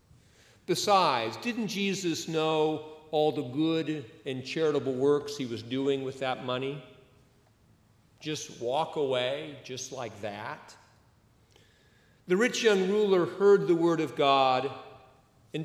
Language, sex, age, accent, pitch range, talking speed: English, male, 50-69, American, 125-160 Hz, 125 wpm